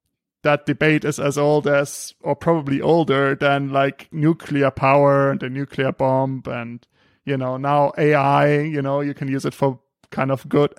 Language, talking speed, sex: English, 180 wpm, male